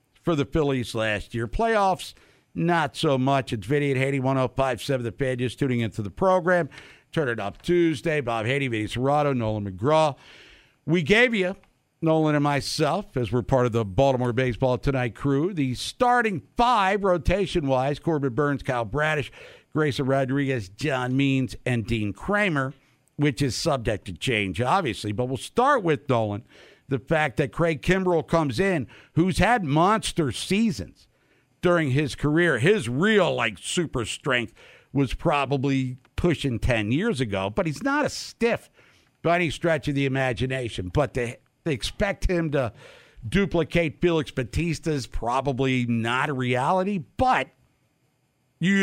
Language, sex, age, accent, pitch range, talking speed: English, male, 60-79, American, 125-165 Hz, 150 wpm